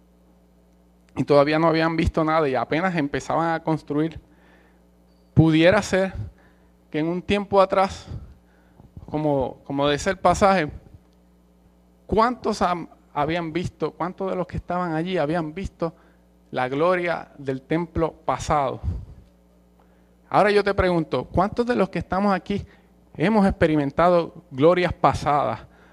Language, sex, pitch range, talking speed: English, male, 110-180 Hz, 125 wpm